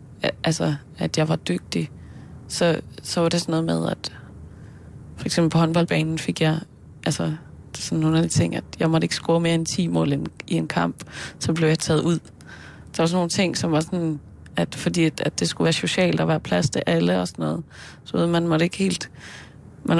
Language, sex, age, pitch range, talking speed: Danish, female, 20-39, 125-180 Hz, 215 wpm